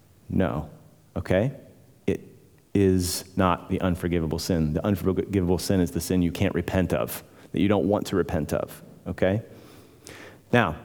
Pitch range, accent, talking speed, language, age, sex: 100-130 Hz, American, 150 wpm, English, 30-49, male